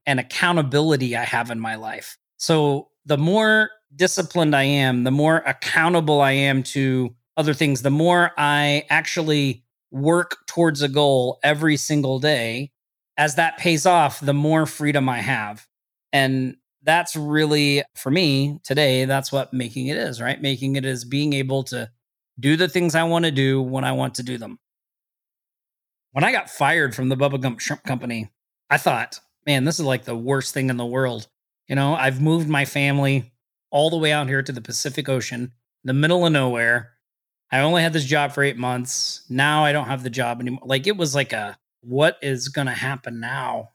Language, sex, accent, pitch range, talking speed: English, male, American, 125-150 Hz, 190 wpm